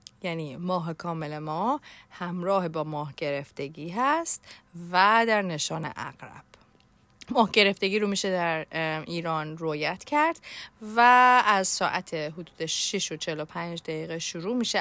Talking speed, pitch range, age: 125 wpm, 165-220 Hz, 30-49